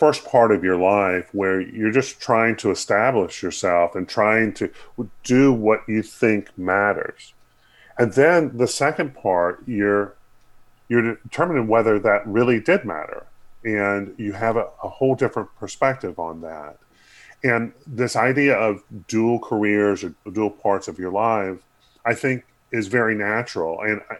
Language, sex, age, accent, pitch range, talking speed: English, female, 40-59, American, 100-125 Hz, 150 wpm